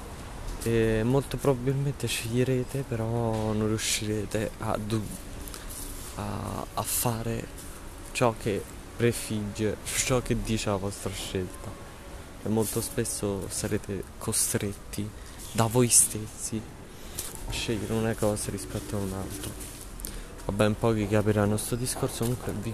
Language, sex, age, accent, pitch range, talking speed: Italian, male, 20-39, native, 95-115 Hz, 120 wpm